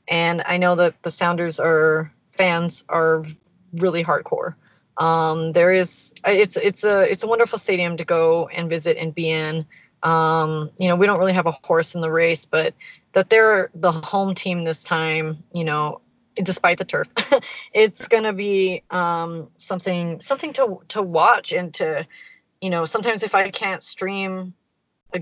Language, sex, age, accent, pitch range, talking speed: English, female, 30-49, American, 160-195 Hz, 170 wpm